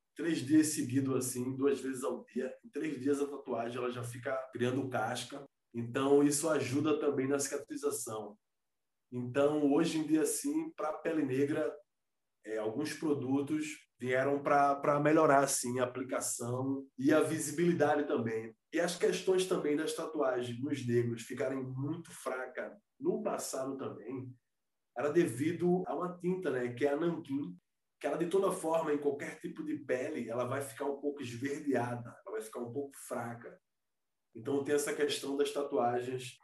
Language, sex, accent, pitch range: Portuguese, male, Brazilian, 130-155 Hz